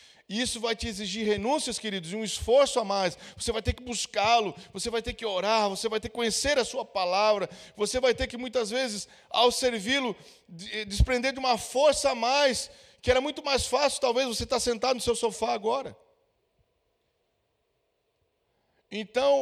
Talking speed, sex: 180 wpm, male